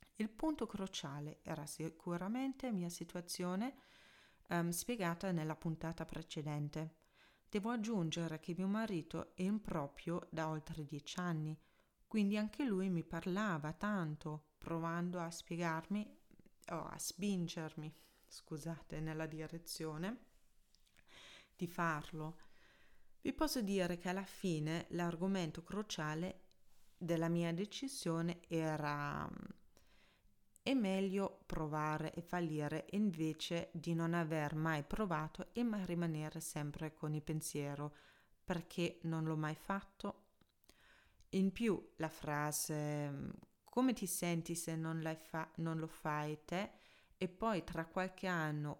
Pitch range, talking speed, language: 155-185 Hz, 115 wpm, Italian